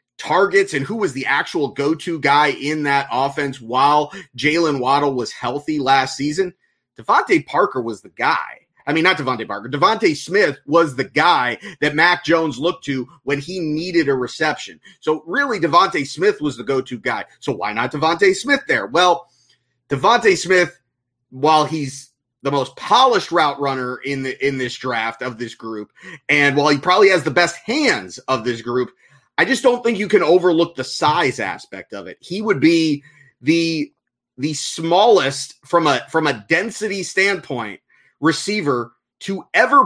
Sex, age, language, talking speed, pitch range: male, 30-49, English, 170 wpm, 140-180 Hz